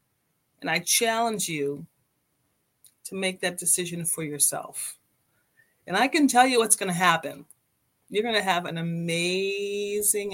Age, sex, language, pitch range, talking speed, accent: 40-59, female, English, 155-190 Hz, 145 wpm, American